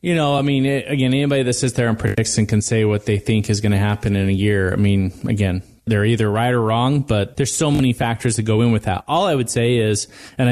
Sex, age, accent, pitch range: male, 30-49, American, 105-125 Hz